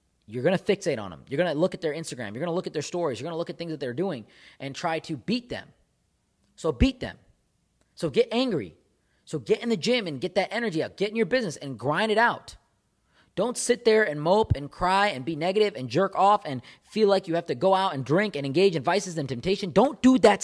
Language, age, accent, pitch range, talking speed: English, 20-39, American, 120-190 Hz, 265 wpm